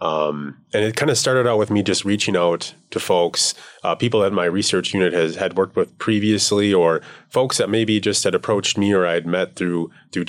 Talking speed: 220 wpm